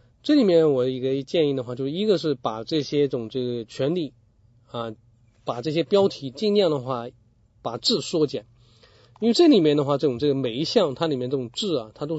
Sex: male